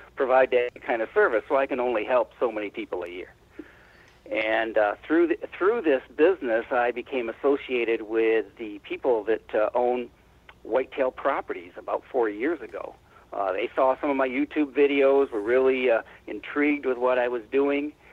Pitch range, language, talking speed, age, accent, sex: 120-165 Hz, English, 180 wpm, 60-79, American, male